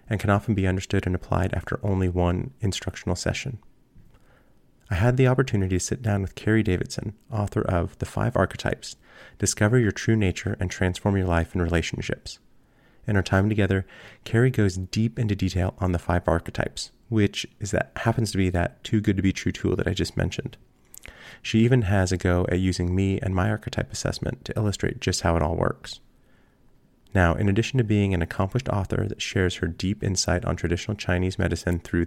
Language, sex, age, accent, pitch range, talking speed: English, male, 30-49, American, 90-110 Hz, 195 wpm